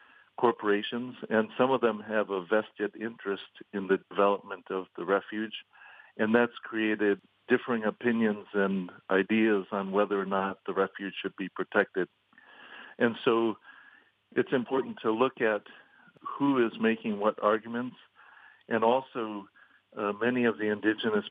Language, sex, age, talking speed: English, male, 50-69, 140 wpm